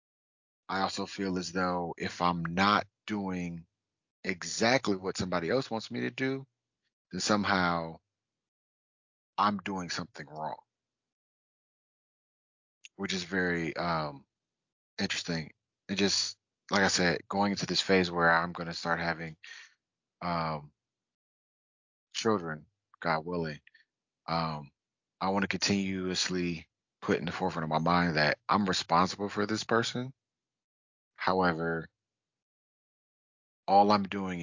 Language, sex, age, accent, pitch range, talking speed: English, male, 30-49, American, 80-100 Hz, 120 wpm